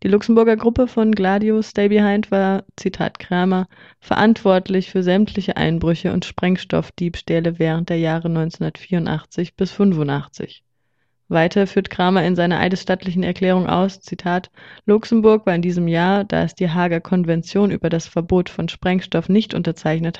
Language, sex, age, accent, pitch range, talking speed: German, female, 20-39, German, 170-195 Hz, 145 wpm